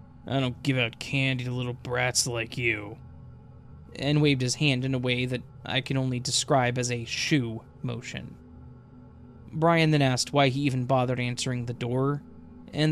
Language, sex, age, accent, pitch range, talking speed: English, male, 20-39, American, 125-145 Hz, 170 wpm